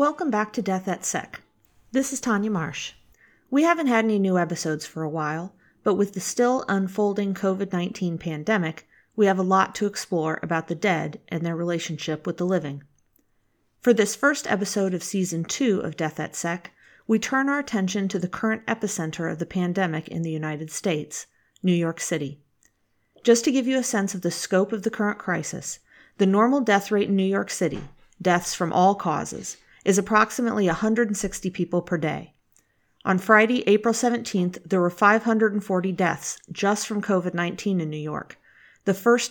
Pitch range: 170-210 Hz